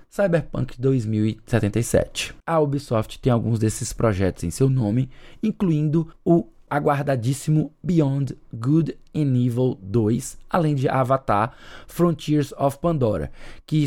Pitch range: 125-165 Hz